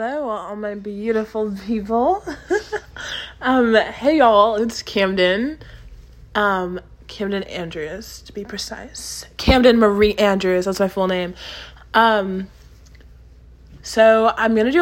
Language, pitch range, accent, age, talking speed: English, 195-235 Hz, American, 20-39, 115 wpm